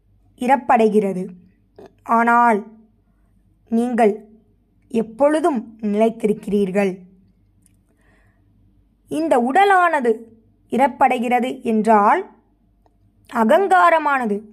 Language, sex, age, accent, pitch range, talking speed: Tamil, female, 20-39, native, 210-245 Hz, 40 wpm